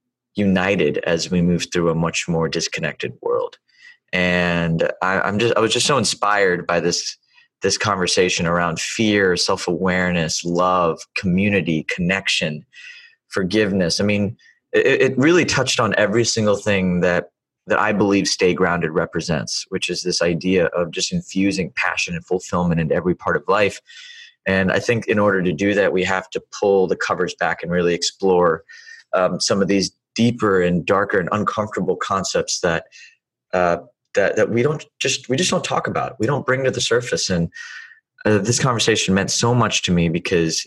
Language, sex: English, male